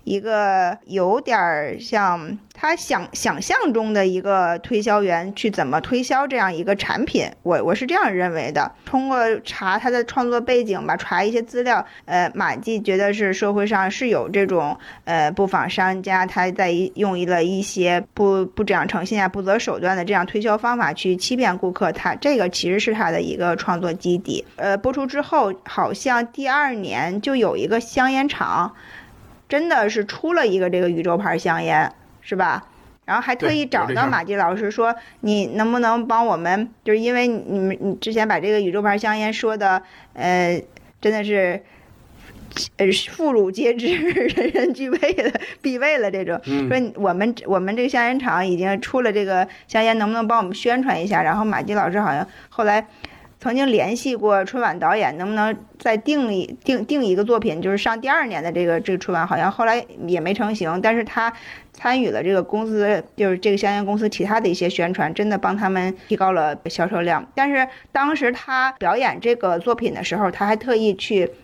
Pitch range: 185-235 Hz